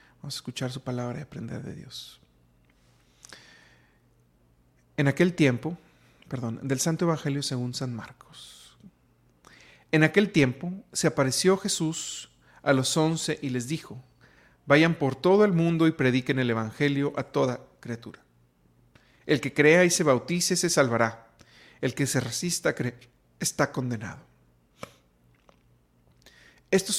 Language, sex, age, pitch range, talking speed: Spanish, male, 40-59, 120-145 Hz, 130 wpm